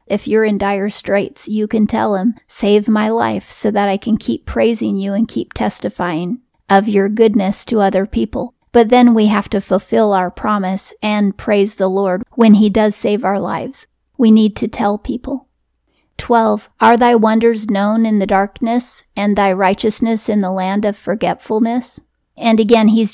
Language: English